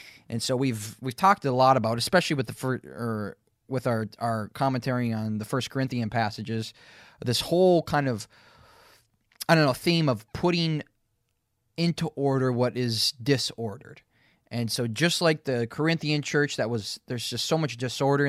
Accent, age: American, 20-39